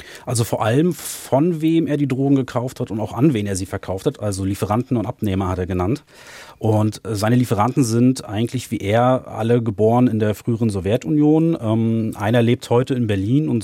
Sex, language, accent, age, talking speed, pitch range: male, German, German, 30-49, 200 wpm, 105-125 Hz